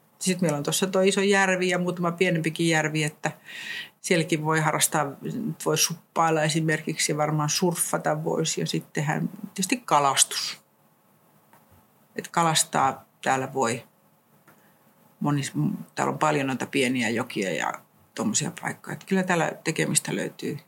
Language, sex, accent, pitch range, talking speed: Finnish, female, native, 155-190 Hz, 130 wpm